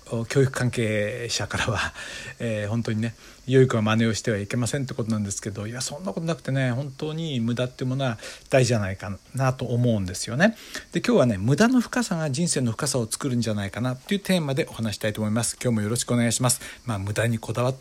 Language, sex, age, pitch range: Japanese, male, 60-79, 110-150 Hz